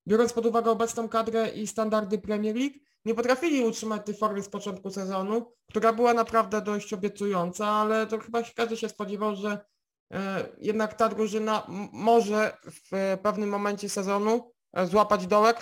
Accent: native